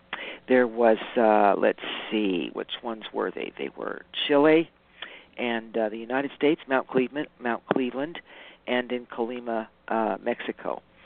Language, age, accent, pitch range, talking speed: English, 50-69, American, 120-140 Hz, 140 wpm